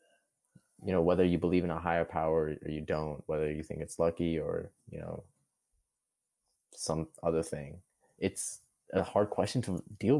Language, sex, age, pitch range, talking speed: English, male, 20-39, 80-95 Hz, 170 wpm